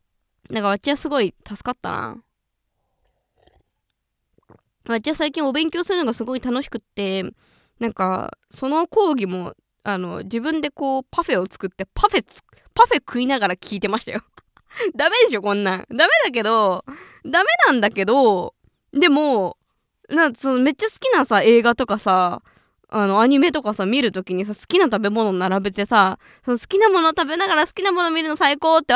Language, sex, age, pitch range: Japanese, female, 20-39, 195-310 Hz